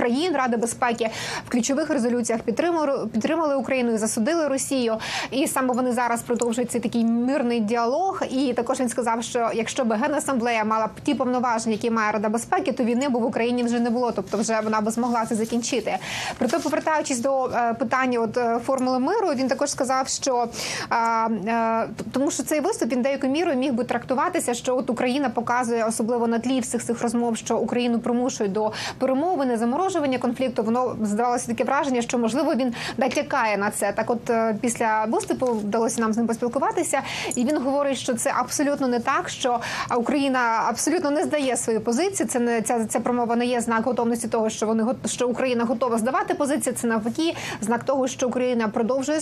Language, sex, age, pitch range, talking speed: Ukrainian, female, 20-39, 230-270 Hz, 180 wpm